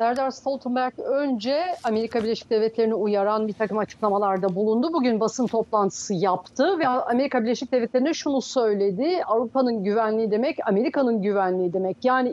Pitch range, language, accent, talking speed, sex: 220-265 Hz, Turkish, native, 135 wpm, female